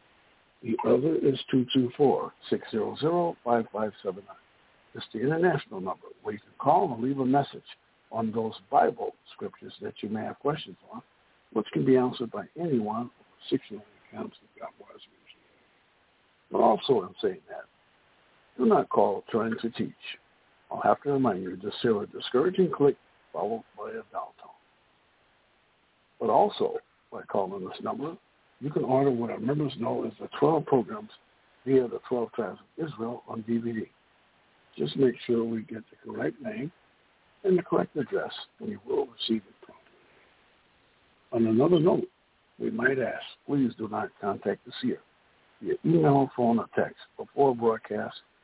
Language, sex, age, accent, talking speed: English, male, 60-79, American, 155 wpm